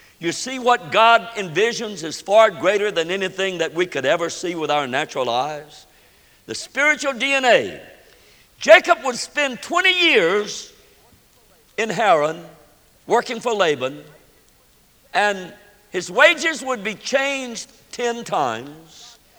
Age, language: 60-79, English